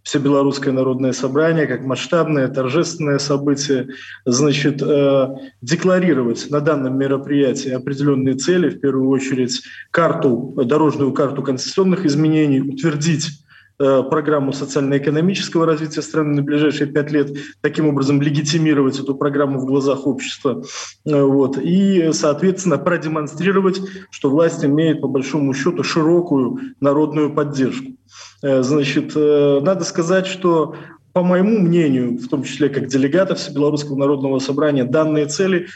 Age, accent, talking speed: 20-39, native, 115 wpm